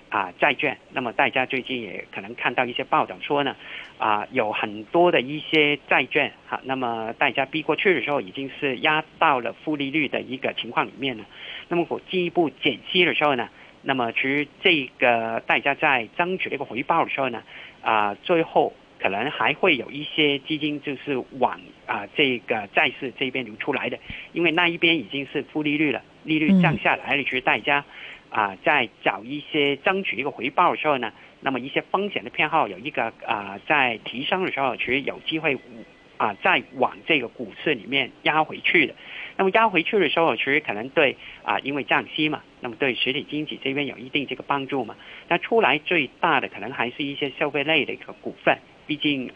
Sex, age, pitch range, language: male, 50-69, 130-155 Hz, Chinese